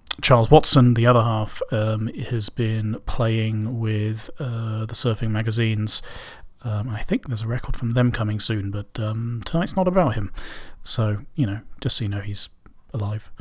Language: English